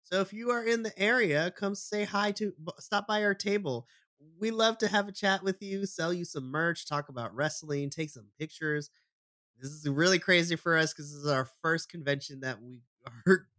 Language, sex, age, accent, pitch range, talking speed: English, male, 20-39, American, 130-195 Hz, 210 wpm